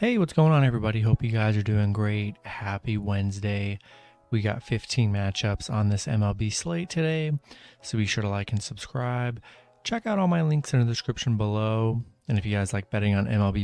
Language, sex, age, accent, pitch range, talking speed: English, male, 30-49, American, 100-125 Hz, 200 wpm